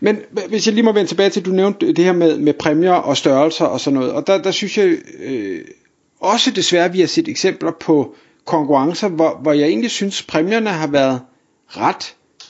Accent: native